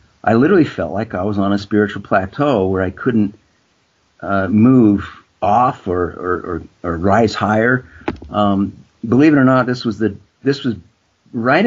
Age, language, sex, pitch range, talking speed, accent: 50-69, English, male, 90-110 Hz, 170 wpm, American